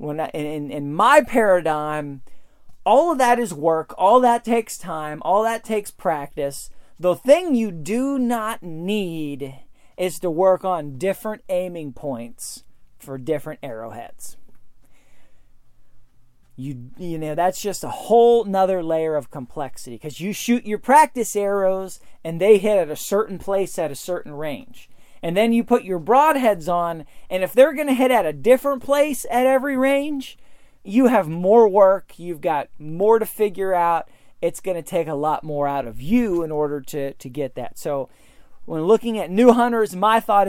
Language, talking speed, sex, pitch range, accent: English, 170 wpm, male, 150-225 Hz, American